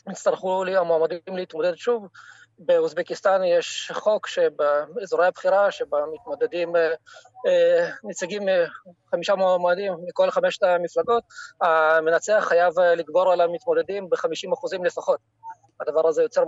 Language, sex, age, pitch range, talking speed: Hebrew, male, 20-39, 170-275 Hz, 100 wpm